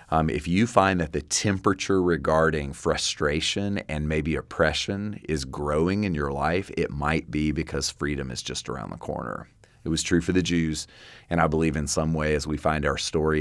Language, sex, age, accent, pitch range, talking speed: English, male, 30-49, American, 75-85 Hz, 195 wpm